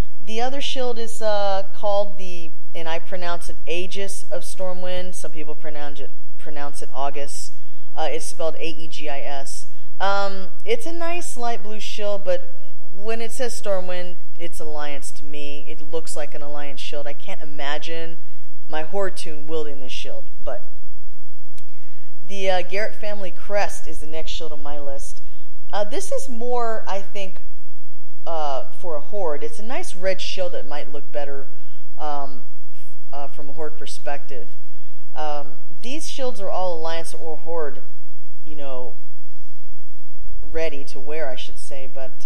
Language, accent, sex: English, American, female